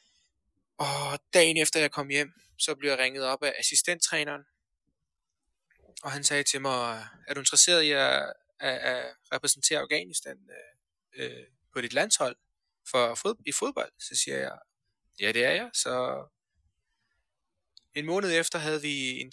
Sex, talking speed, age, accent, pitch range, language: male, 145 wpm, 20-39, native, 130-150 Hz, Danish